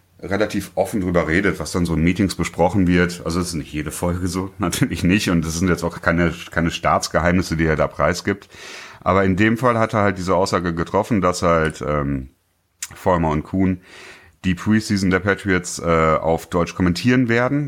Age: 30-49